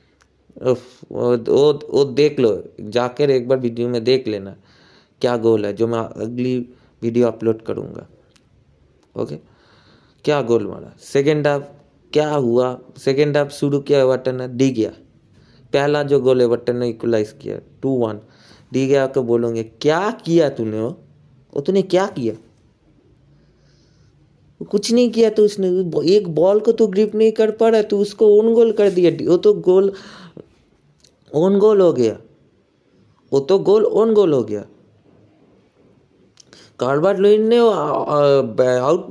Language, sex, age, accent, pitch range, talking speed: Hindi, male, 20-39, native, 125-205 Hz, 145 wpm